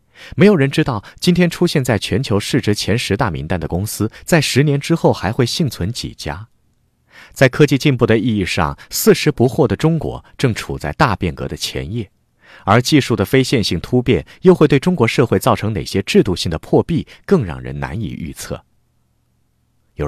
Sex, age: male, 30-49